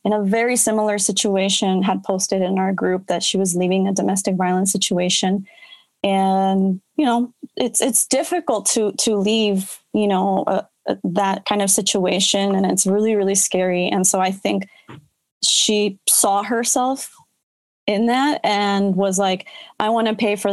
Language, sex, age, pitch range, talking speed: English, female, 20-39, 190-220 Hz, 165 wpm